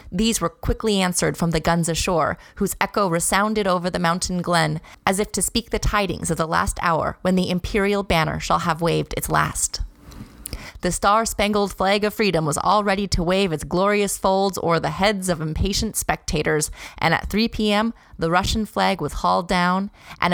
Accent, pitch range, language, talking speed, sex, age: American, 170-210 Hz, English, 190 wpm, female, 30-49